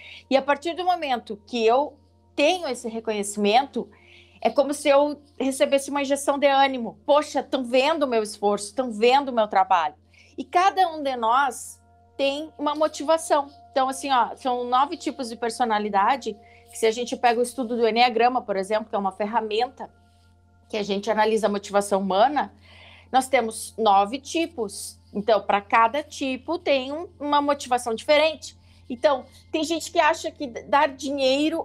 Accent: Brazilian